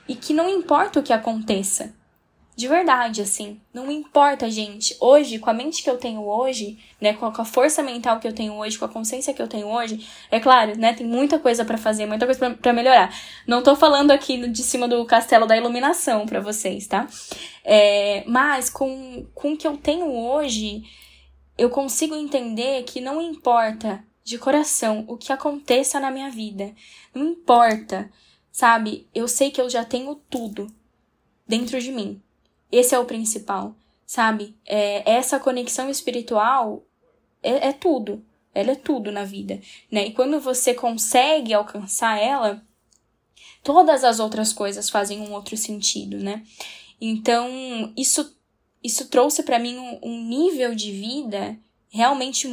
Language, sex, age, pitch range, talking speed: English, female, 10-29, 215-270 Hz, 165 wpm